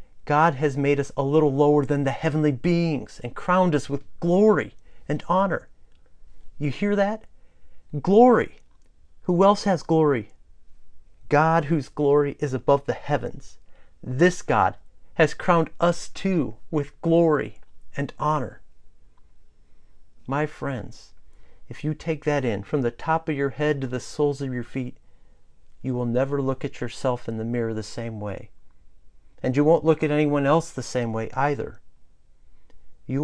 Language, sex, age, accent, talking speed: English, male, 40-59, American, 155 wpm